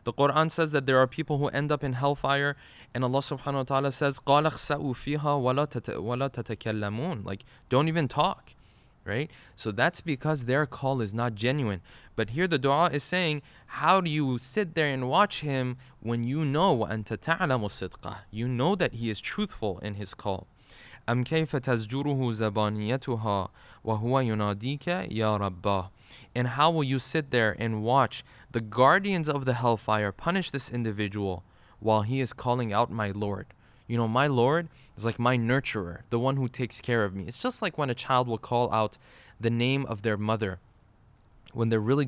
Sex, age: male, 20-39